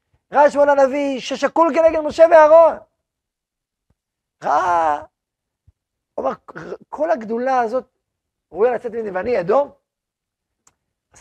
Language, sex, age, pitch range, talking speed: Hebrew, male, 40-59, 185-260 Hz, 95 wpm